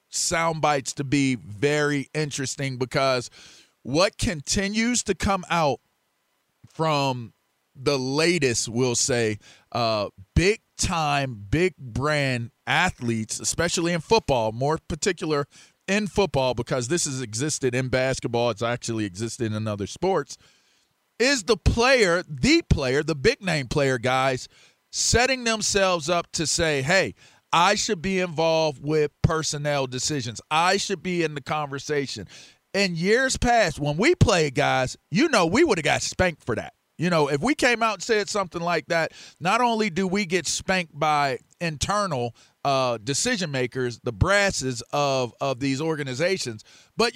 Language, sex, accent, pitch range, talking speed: English, male, American, 130-190 Hz, 145 wpm